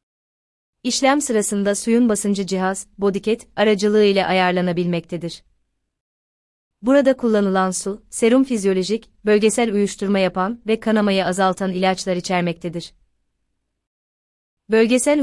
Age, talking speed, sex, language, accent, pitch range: 30-49, 90 wpm, female, Turkish, native, 180-210 Hz